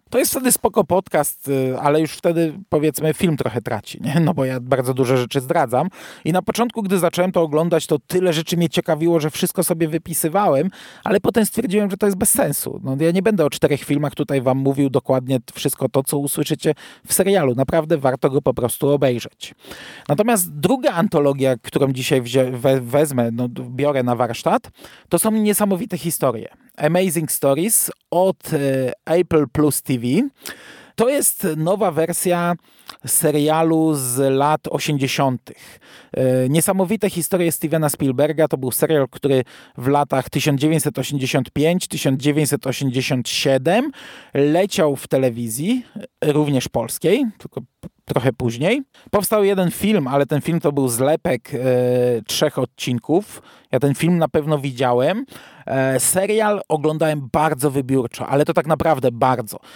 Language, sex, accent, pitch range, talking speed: Polish, male, native, 135-175 Hz, 140 wpm